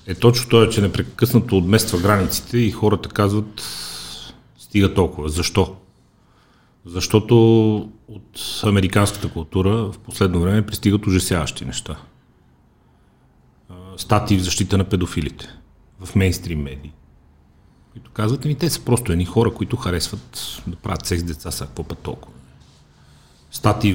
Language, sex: Bulgarian, male